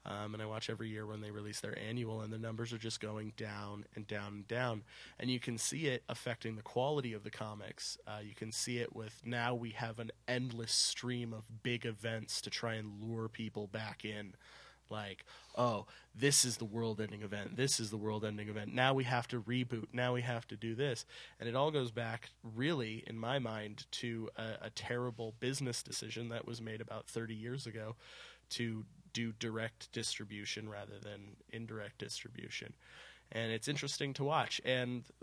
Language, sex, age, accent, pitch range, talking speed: English, male, 20-39, American, 110-125 Hz, 195 wpm